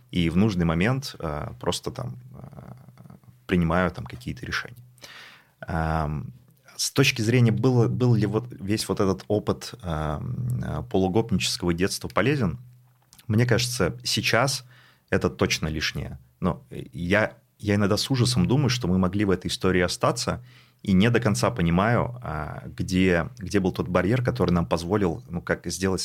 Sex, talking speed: male, 135 wpm